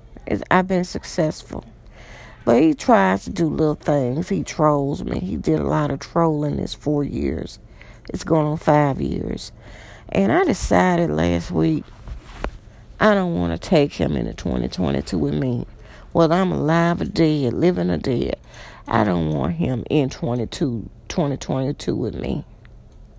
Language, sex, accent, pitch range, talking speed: English, female, American, 110-155 Hz, 150 wpm